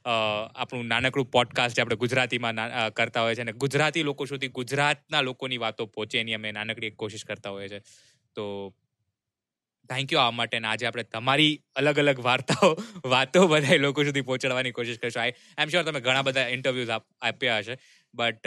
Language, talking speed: Gujarati, 170 wpm